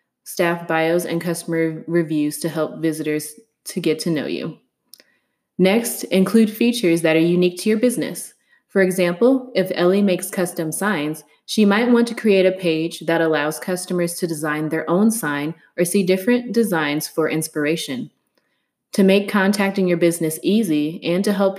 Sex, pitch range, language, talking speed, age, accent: female, 165-205 Hz, English, 165 wpm, 20-39, American